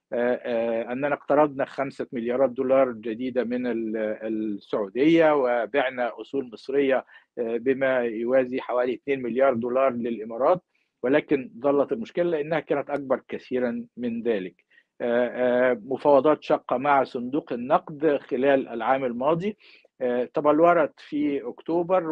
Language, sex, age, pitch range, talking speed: Arabic, male, 50-69, 120-145 Hz, 105 wpm